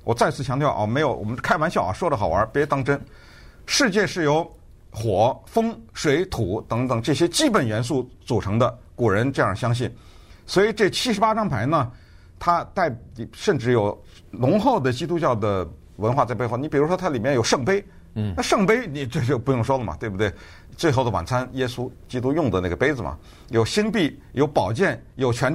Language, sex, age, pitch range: Chinese, male, 50-69, 100-145 Hz